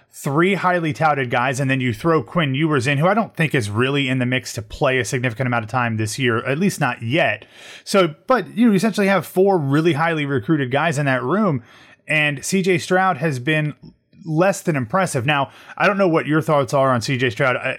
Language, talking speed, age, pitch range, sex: English, 220 wpm, 30-49, 125-165 Hz, male